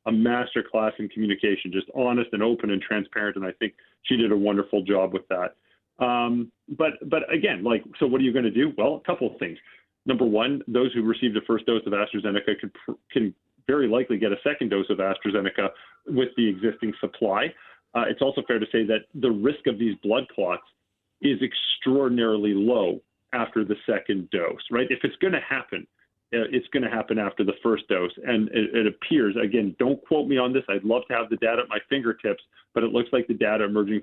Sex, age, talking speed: male, 40-59, 215 wpm